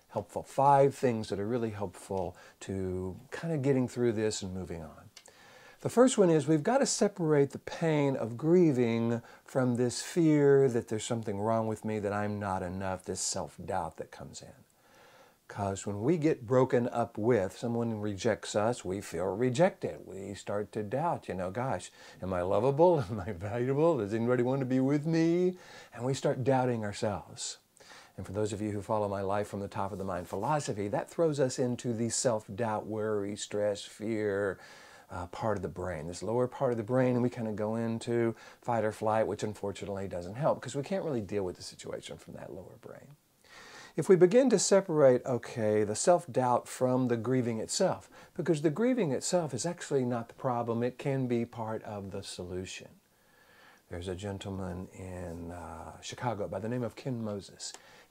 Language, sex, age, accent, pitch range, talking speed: English, male, 50-69, American, 105-135 Hz, 190 wpm